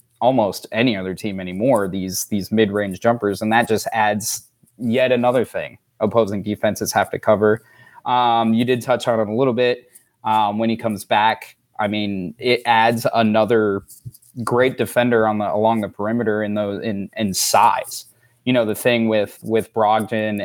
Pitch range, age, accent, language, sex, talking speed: 110-125 Hz, 20-39, American, English, male, 175 wpm